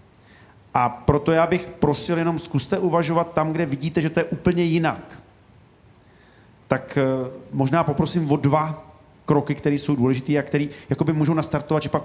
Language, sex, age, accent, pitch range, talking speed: Czech, male, 40-59, native, 135-165 Hz, 160 wpm